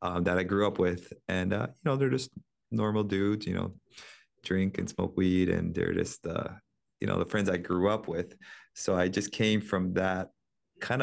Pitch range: 90-105 Hz